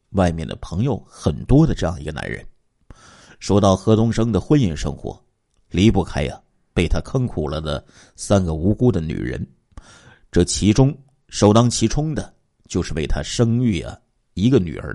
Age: 50-69